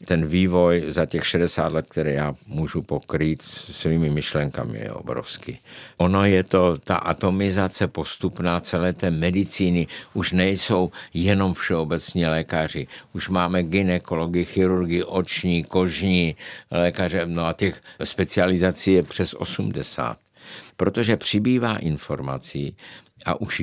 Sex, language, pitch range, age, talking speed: male, Czech, 80-95 Hz, 60-79, 120 wpm